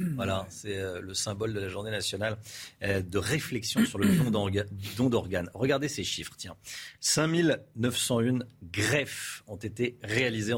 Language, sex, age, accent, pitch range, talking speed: French, male, 40-59, French, 100-130 Hz, 135 wpm